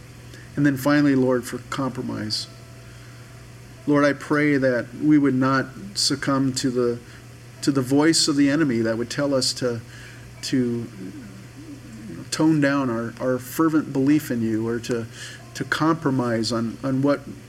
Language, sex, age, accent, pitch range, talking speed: English, male, 50-69, American, 120-140 Hz, 150 wpm